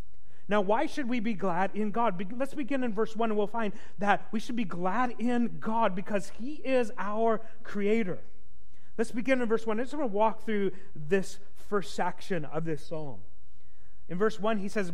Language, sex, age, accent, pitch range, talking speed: English, male, 40-59, American, 185-225 Hz, 200 wpm